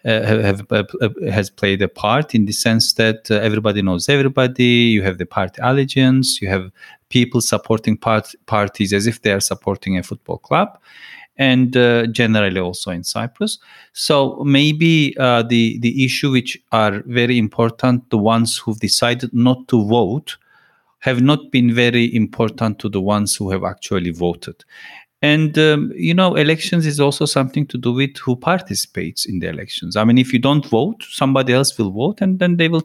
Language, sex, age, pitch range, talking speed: English, male, 40-59, 110-135 Hz, 175 wpm